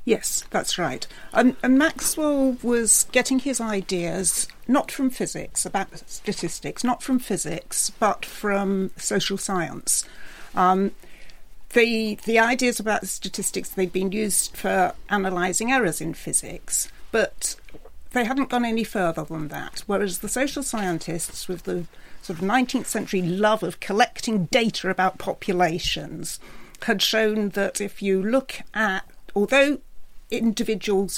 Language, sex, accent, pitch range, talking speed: English, female, British, 185-235 Hz, 135 wpm